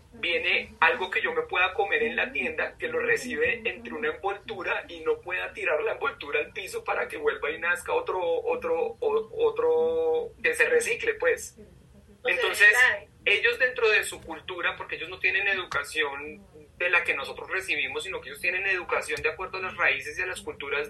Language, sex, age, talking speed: Spanish, male, 30-49, 190 wpm